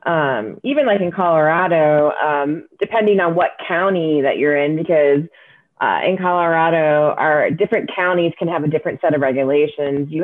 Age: 30-49